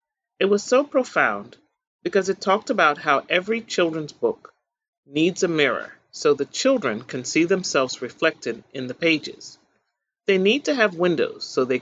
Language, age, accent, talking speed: English, 40-59, American, 160 wpm